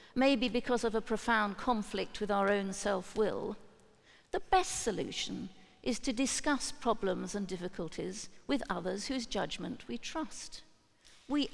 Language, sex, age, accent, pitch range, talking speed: English, female, 50-69, British, 200-240 Hz, 135 wpm